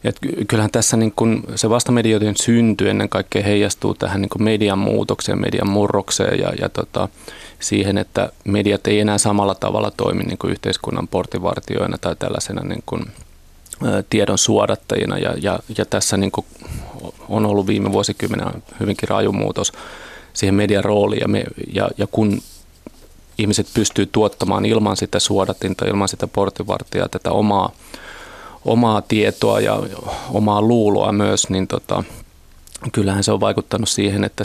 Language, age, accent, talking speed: Finnish, 30-49, native, 135 wpm